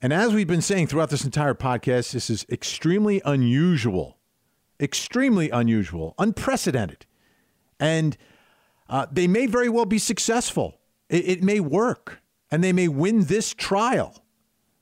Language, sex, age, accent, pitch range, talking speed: English, male, 50-69, American, 140-210 Hz, 140 wpm